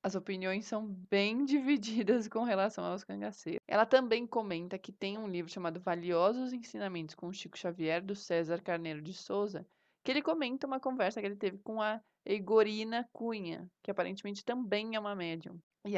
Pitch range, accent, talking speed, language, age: 180-225 Hz, Brazilian, 175 wpm, Portuguese, 20-39